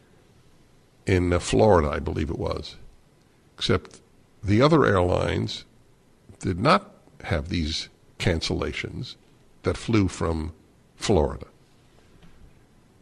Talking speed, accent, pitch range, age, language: 90 wpm, American, 80-105 Hz, 60-79, English